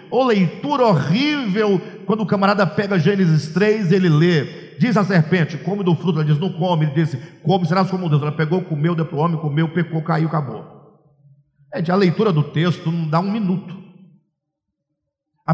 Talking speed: 190 wpm